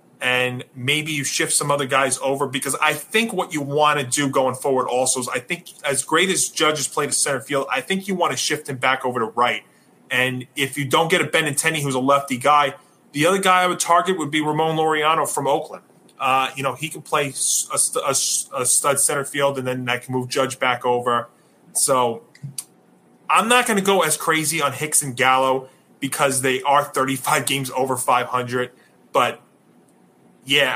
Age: 30-49